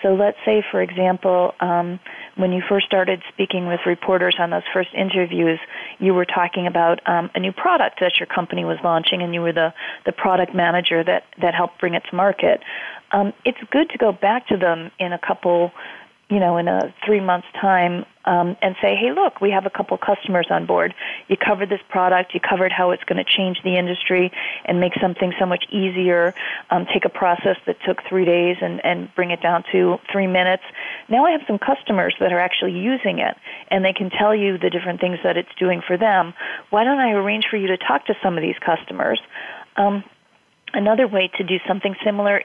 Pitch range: 180-200 Hz